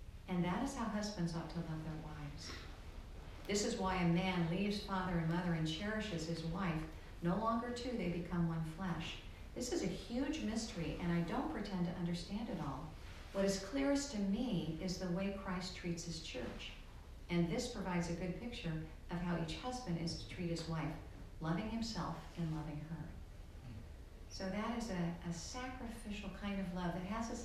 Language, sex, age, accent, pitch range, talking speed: English, female, 50-69, American, 165-225 Hz, 190 wpm